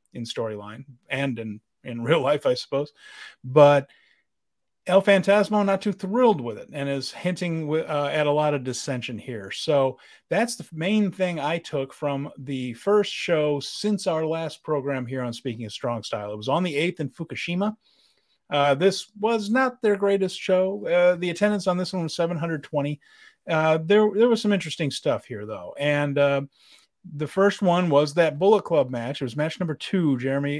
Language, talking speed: English, 190 wpm